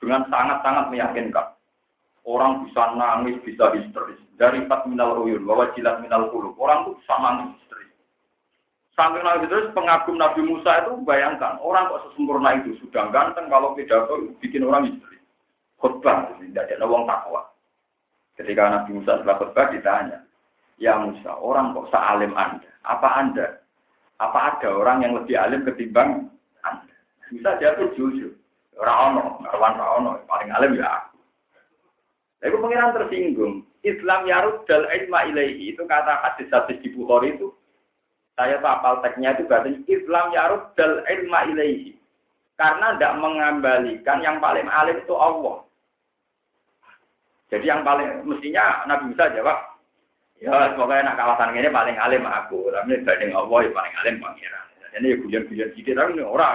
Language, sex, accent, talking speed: Indonesian, male, native, 145 wpm